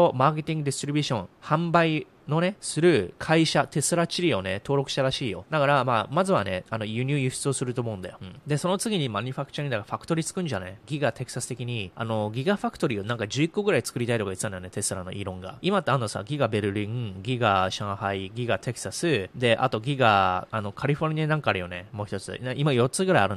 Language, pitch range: Japanese, 105-150 Hz